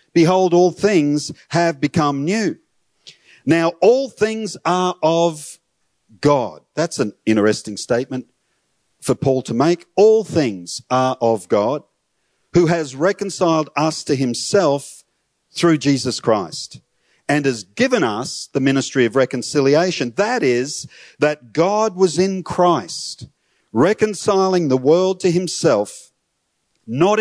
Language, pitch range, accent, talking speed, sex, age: English, 130-170 Hz, Australian, 120 wpm, male, 50-69